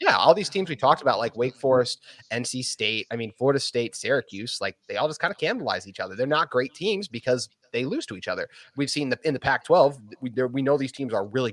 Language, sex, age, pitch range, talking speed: English, male, 30-49, 110-145 Hz, 260 wpm